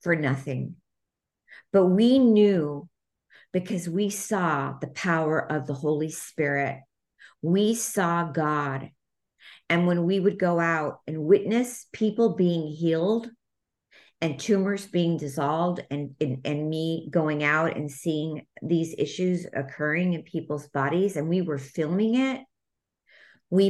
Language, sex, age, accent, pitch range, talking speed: English, female, 50-69, American, 150-180 Hz, 130 wpm